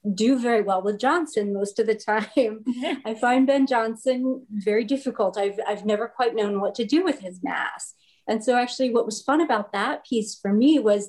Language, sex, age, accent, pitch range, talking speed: English, female, 30-49, American, 200-235 Hz, 205 wpm